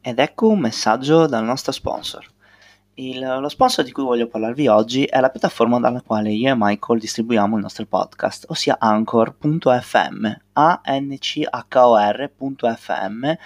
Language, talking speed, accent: Italian, 135 wpm, native